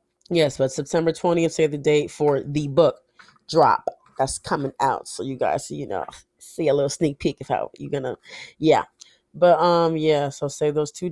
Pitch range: 135-160 Hz